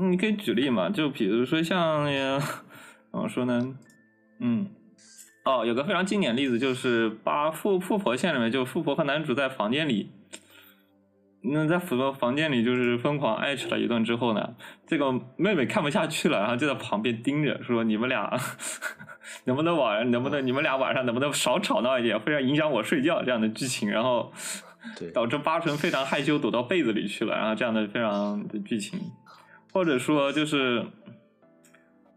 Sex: male